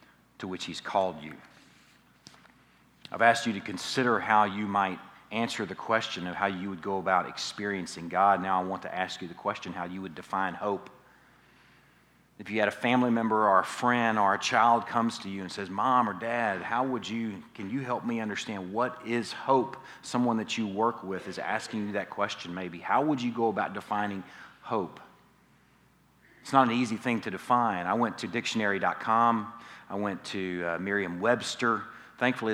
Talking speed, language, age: 190 wpm, English, 40-59